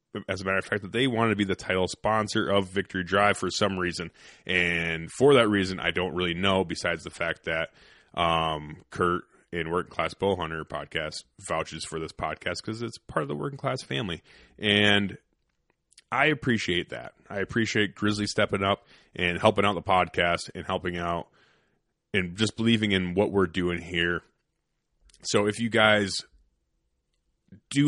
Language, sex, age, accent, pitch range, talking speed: English, male, 20-39, American, 90-105 Hz, 175 wpm